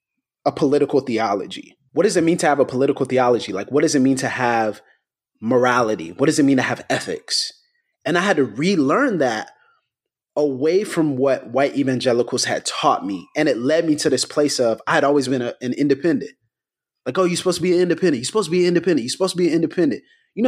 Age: 30-49